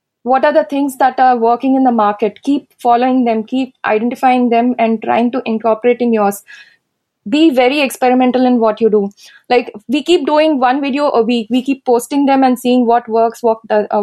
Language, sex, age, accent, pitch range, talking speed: English, female, 20-39, Indian, 235-300 Hz, 195 wpm